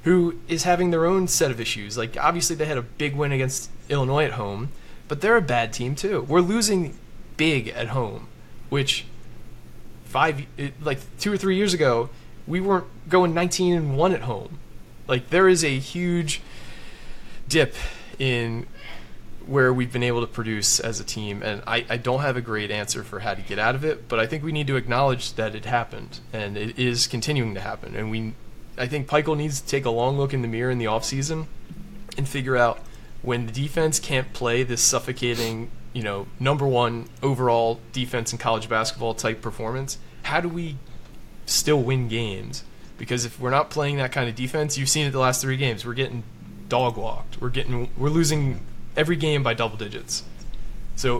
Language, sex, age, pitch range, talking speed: English, male, 20-39, 115-150 Hz, 195 wpm